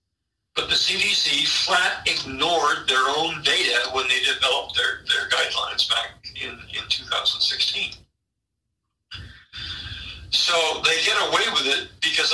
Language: English